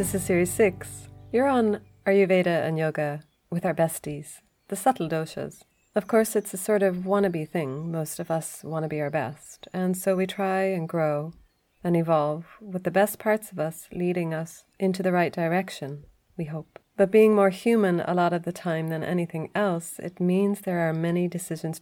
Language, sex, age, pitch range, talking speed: English, female, 30-49, 155-190 Hz, 195 wpm